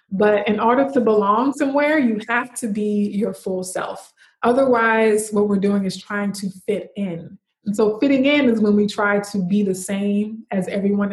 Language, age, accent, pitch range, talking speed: English, 20-39, American, 200-225 Hz, 195 wpm